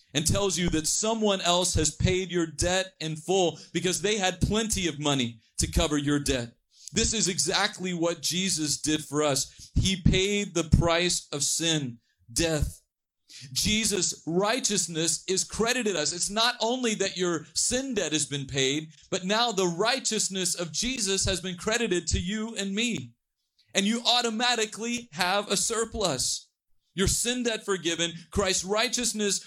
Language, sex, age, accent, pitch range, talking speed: English, male, 40-59, American, 150-200 Hz, 155 wpm